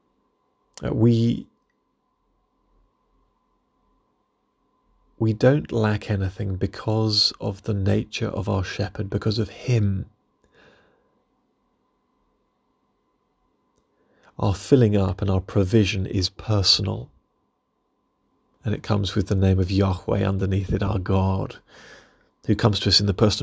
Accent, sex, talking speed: British, male, 110 wpm